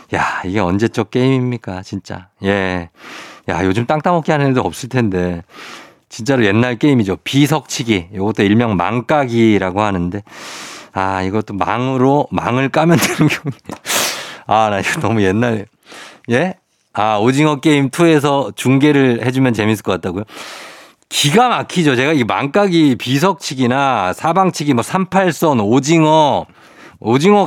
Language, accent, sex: Korean, native, male